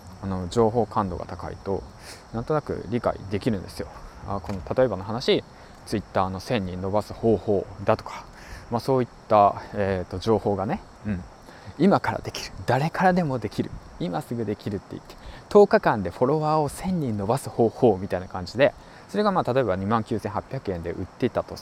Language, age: Japanese, 20-39